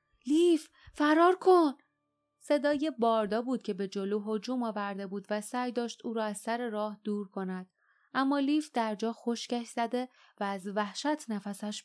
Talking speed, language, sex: 155 wpm, Persian, female